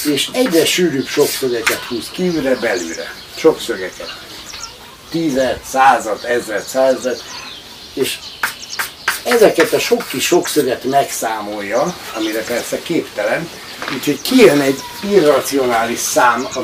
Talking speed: 100 wpm